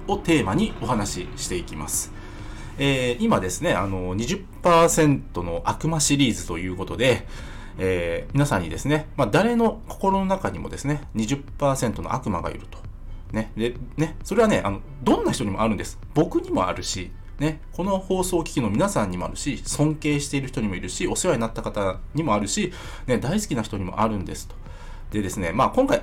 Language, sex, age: Japanese, male, 20-39